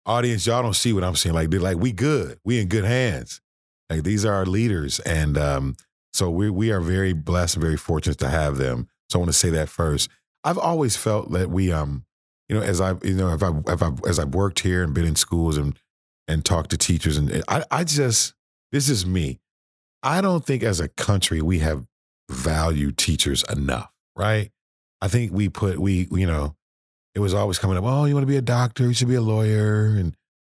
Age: 40-59